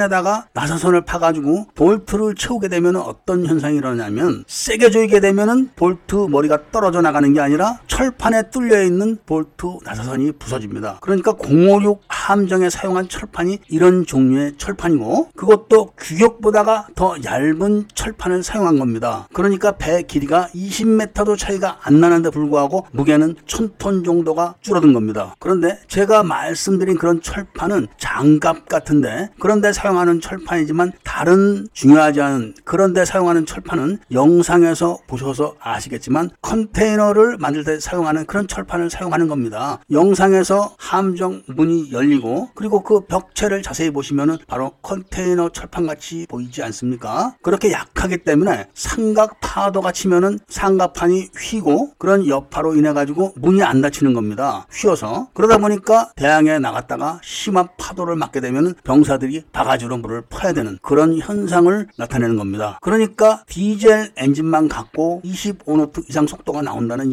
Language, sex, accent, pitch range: Korean, male, native, 150-205 Hz